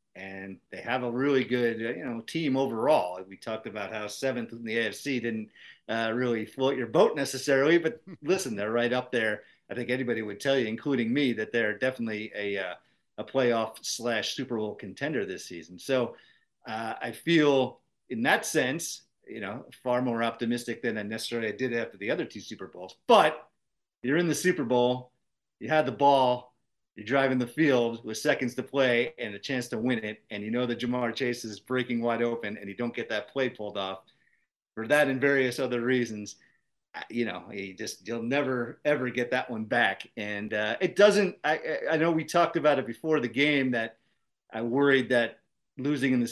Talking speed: 200 wpm